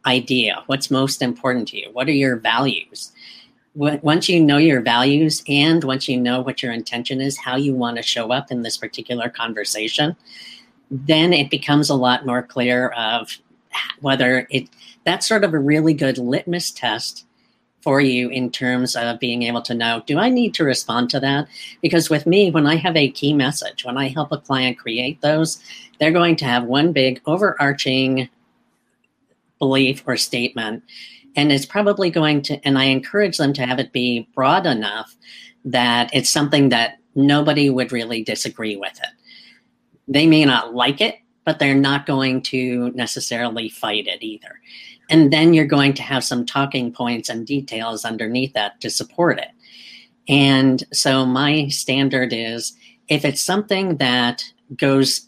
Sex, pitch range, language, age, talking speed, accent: female, 125-150 Hz, English, 40-59, 170 wpm, American